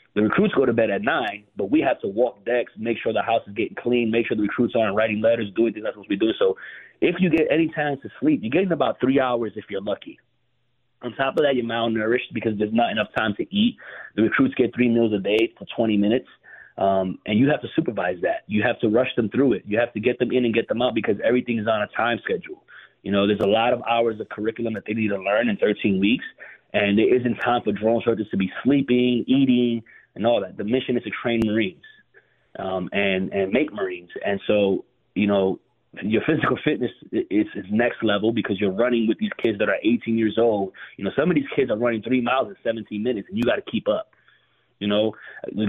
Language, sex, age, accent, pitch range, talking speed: English, male, 30-49, American, 105-130 Hz, 250 wpm